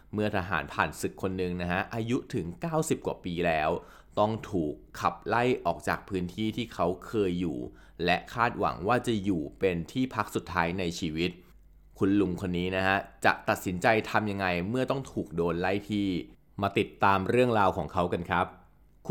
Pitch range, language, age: 90-115 Hz, Thai, 20-39